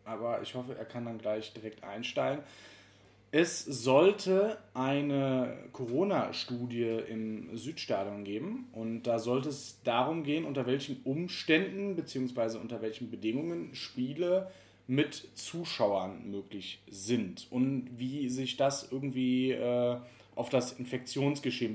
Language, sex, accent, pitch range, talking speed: German, male, German, 110-130 Hz, 120 wpm